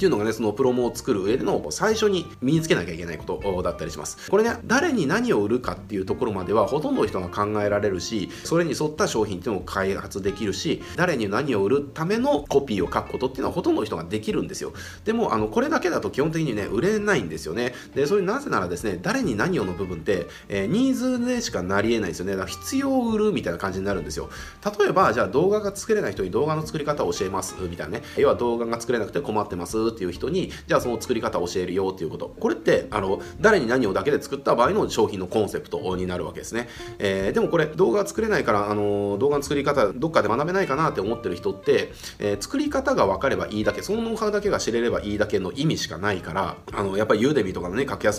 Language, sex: Japanese, male